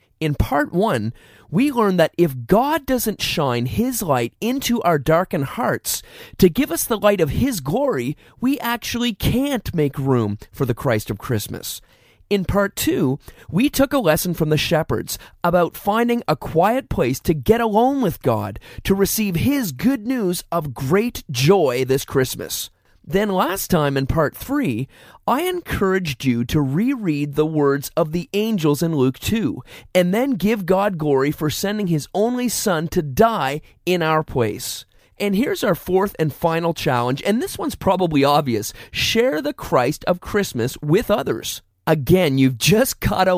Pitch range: 140-210 Hz